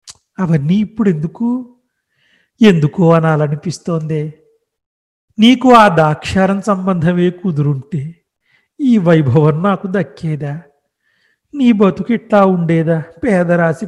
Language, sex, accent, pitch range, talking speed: Telugu, male, native, 165-215 Hz, 80 wpm